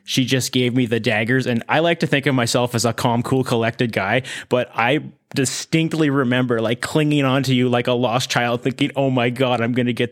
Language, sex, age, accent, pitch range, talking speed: English, male, 20-39, American, 120-140 Hz, 230 wpm